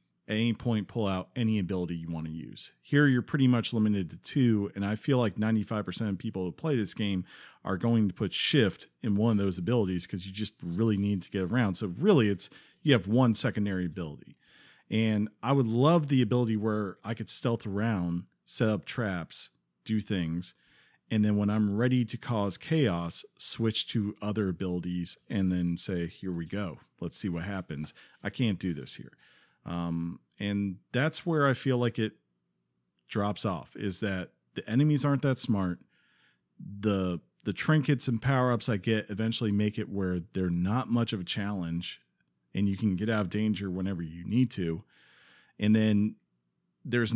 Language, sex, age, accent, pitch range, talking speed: English, male, 40-59, American, 90-115 Hz, 185 wpm